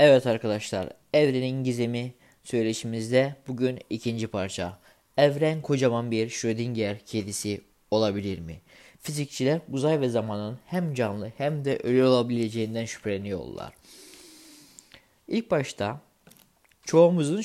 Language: Turkish